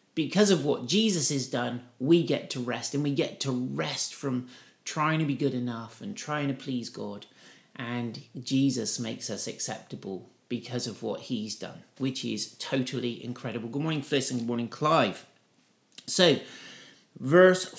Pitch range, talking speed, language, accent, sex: 125-170 Hz, 165 wpm, English, British, male